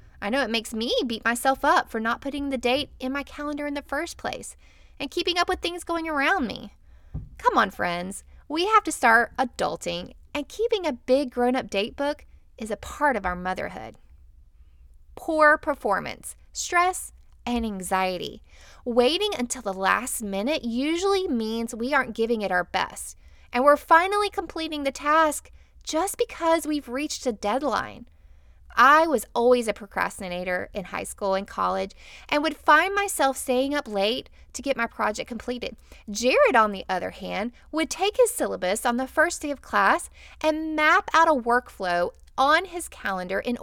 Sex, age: female, 20-39